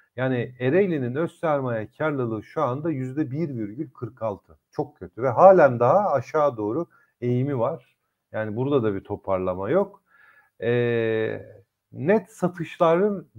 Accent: native